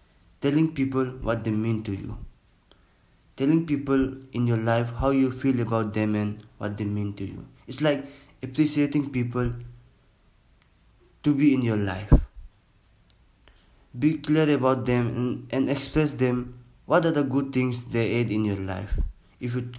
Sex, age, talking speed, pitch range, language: male, 20-39, 160 wpm, 110-135 Hz, English